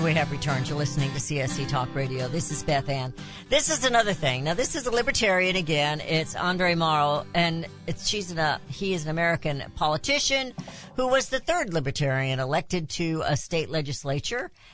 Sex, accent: female, American